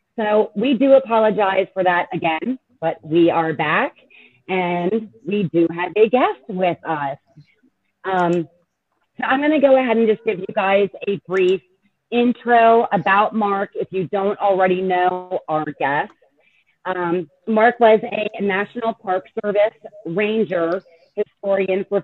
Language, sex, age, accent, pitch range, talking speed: English, female, 30-49, American, 175-215 Hz, 140 wpm